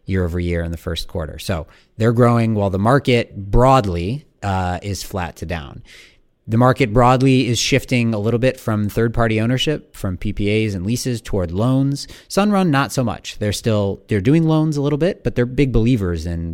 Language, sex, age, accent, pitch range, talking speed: English, male, 30-49, American, 90-125 Hz, 190 wpm